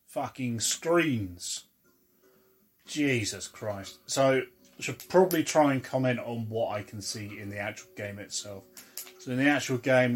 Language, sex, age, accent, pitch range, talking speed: English, male, 30-49, British, 110-145 Hz, 155 wpm